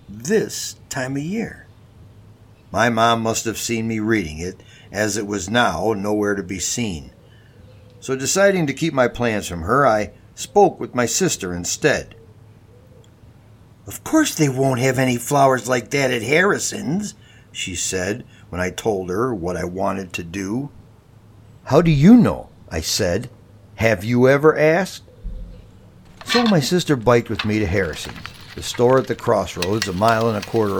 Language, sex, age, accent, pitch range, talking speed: English, male, 60-79, American, 100-130 Hz, 165 wpm